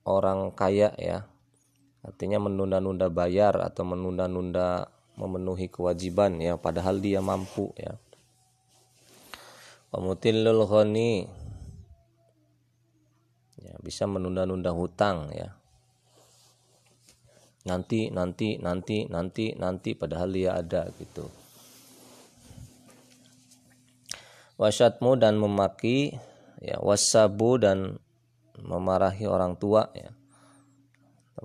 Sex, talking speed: male, 75 wpm